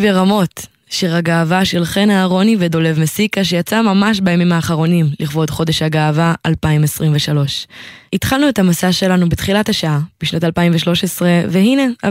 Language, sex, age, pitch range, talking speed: Hebrew, female, 20-39, 165-205 Hz, 125 wpm